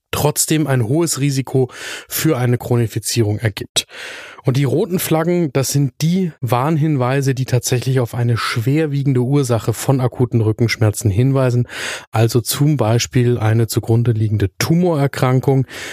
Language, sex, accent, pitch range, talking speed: German, male, German, 115-140 Hz, 125 wpm